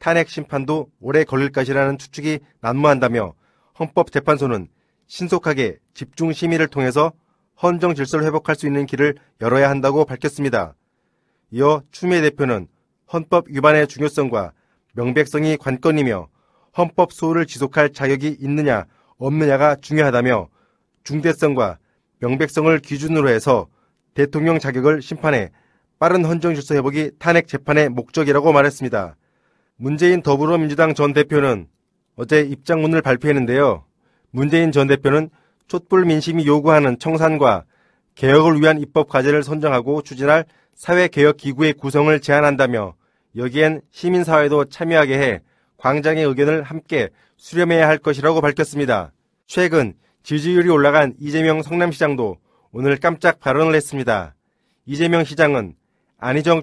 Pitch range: 140-160 Hz